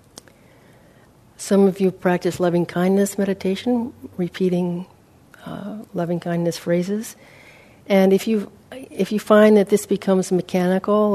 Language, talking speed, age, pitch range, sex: English, 110 wpm, 60-79, 165-200 Hz, female